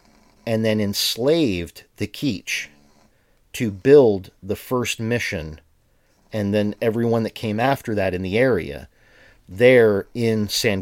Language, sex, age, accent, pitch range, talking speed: English, male, 40-59, American, 100-120 Hz, 130 wpm